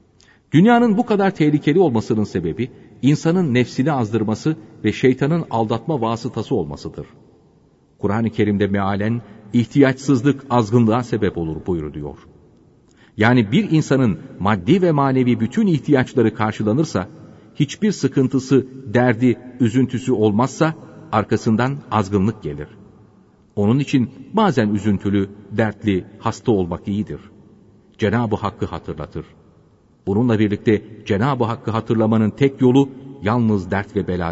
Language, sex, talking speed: Turkish, male, 105 wpm